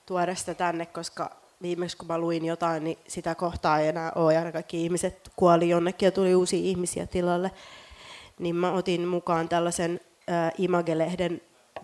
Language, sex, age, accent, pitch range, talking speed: Finnish, female, 30-49, native, 170-185 Hz, 160 wpm